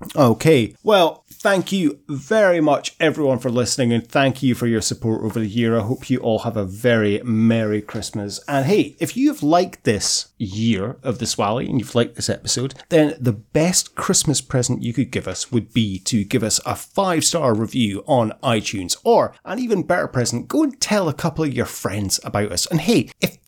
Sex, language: male, English